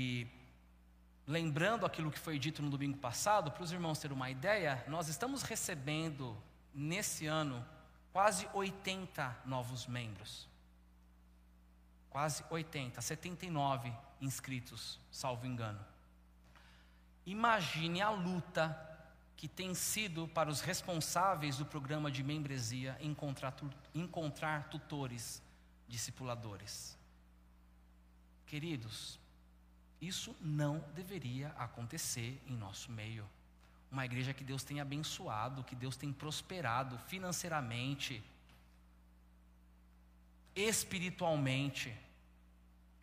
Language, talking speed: Portuguese, 90 wpm